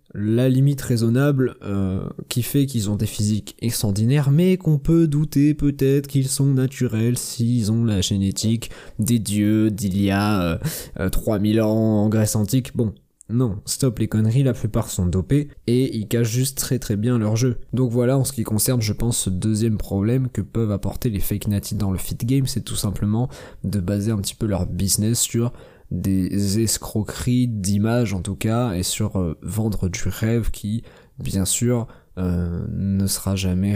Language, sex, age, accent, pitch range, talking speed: French, male, 20-39, French, 95-120 Hz, 185 wpm